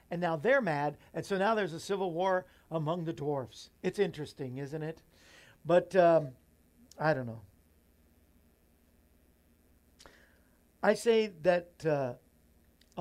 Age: 50-69